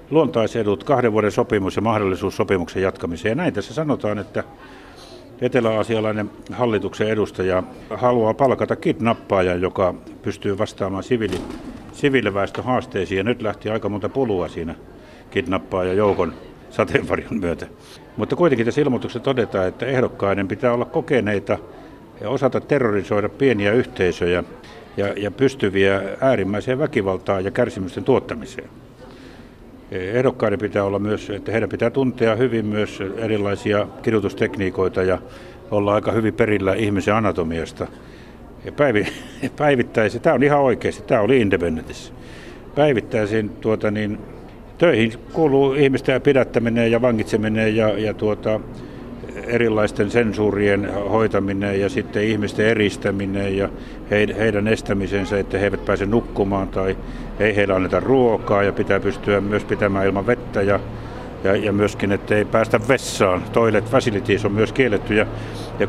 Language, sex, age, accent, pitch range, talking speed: Finnish, male, 60-79, native, 100-120 Hz, 120 wpm